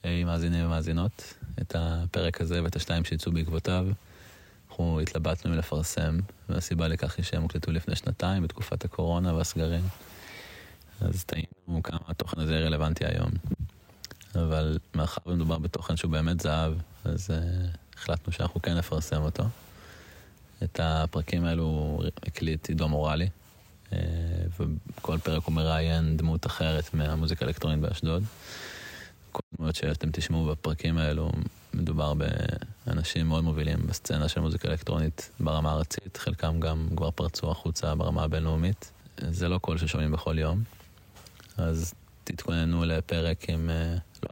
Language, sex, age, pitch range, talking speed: Hebrew, male, 20-39, 80-90 Hz, 125 wpm